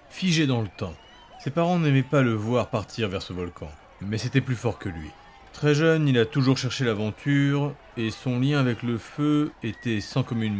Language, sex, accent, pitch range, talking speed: French, male, French, 105-140 Hz, 205 wpm